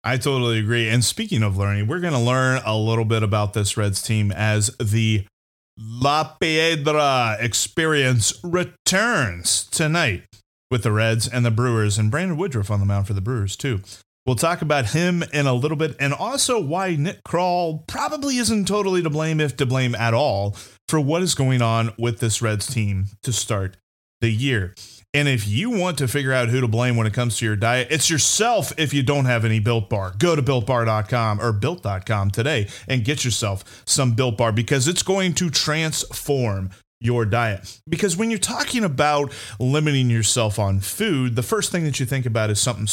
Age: 30-49